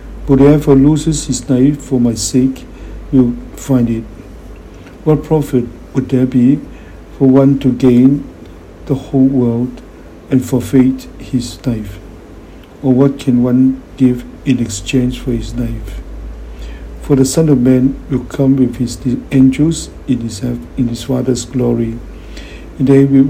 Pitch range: 90-130 Hz